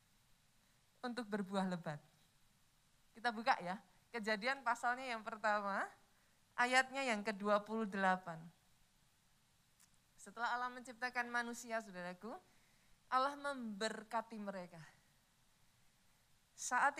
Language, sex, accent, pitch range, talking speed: Indonesian, female, native, 185-260 Hz, 80 wpm